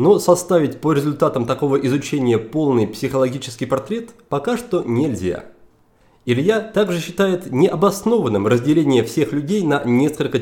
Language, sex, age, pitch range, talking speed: Russian, male, 30-49, 120-175 Hz, 120 wpm